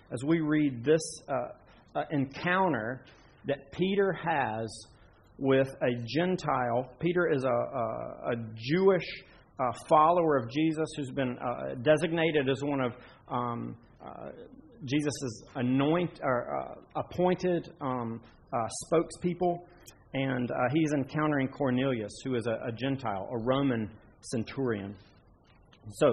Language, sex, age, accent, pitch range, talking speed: English, male, 40-59, American, 125-170 Hz, 115 wpm